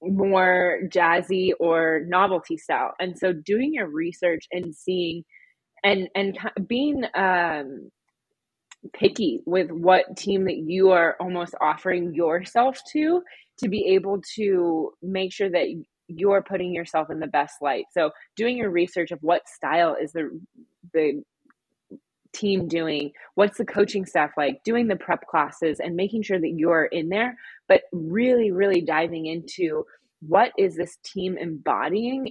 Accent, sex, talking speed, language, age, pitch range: American, female, 145 wpm, English, 20-39, 165-200 Hz